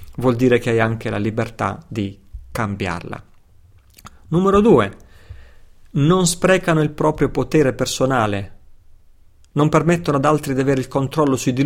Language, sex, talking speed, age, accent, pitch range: Italian, male, 140 wpm, 40-59, native, 110-140 Hz